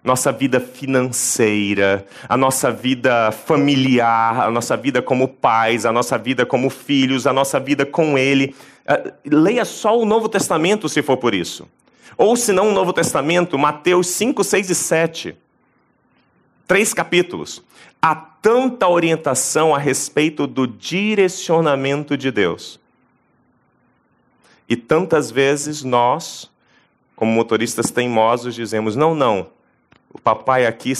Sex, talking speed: male, 130 wpm